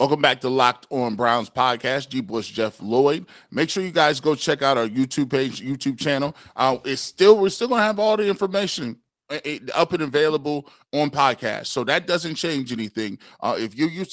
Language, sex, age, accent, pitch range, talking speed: English, male, 30-49, American, 130-170 Hz, 200 wpm